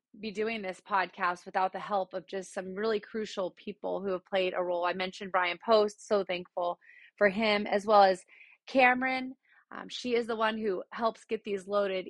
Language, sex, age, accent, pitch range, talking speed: English, female, 30-49, American, 180-210 Hz, 200 wpm